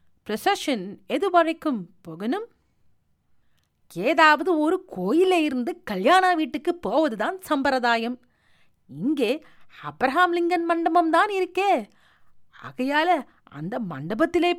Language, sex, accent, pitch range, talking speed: Tamil, female, native, 215-335 Hz, 80 wpm